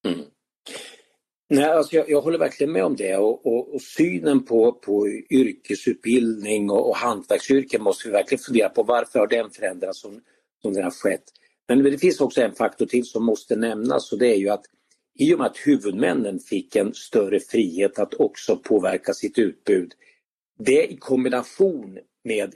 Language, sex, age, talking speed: Swedish, male, 50-69, 170 wpm